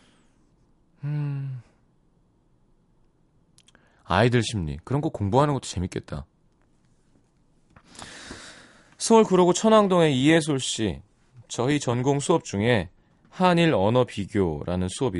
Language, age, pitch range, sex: Korean, 30-49, 100-145 Hz, male